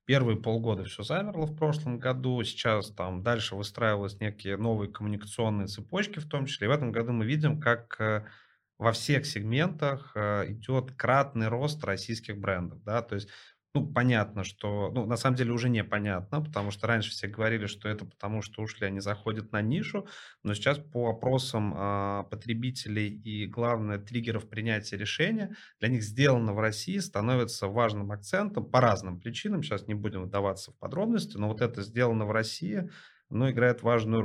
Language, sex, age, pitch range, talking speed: Russian, male, 30-49, 105-125 Hz, 165 wpm